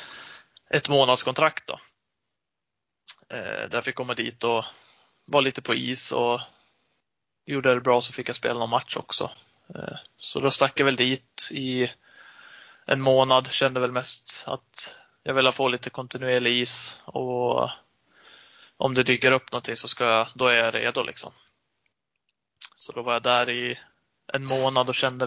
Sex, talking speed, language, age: male, 165 wpm, Swedish, 20-39